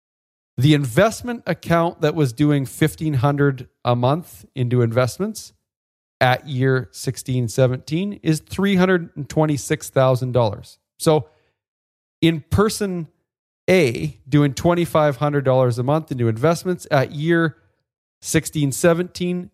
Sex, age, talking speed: male, 40-59, 90 wpm